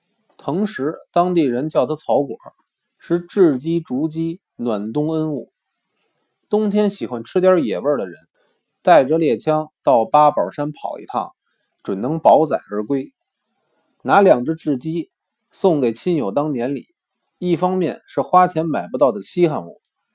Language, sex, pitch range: Chinese, male, 150-195 Hz